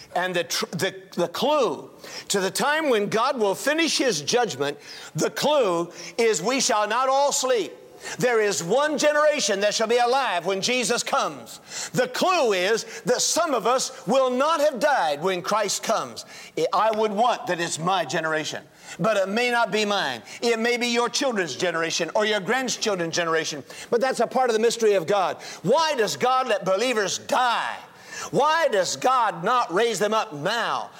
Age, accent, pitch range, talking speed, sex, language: 50-69, American, 185-265 Hz, 180 wpm, male, English